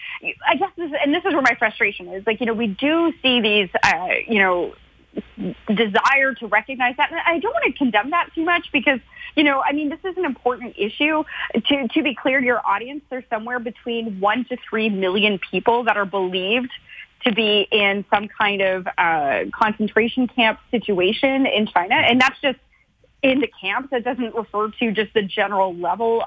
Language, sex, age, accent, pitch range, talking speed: English, female, 30-49, American, 205-255 Hz, 200 wpm